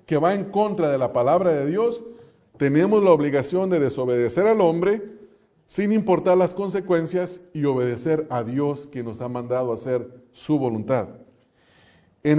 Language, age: English, 40-59